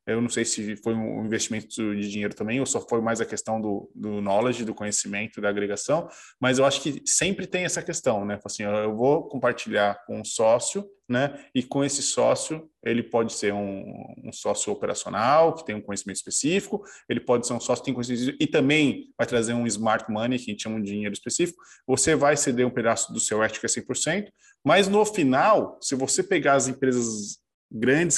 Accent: Brazilian